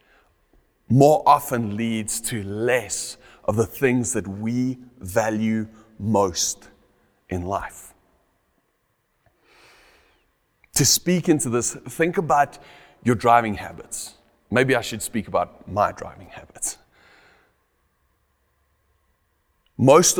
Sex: male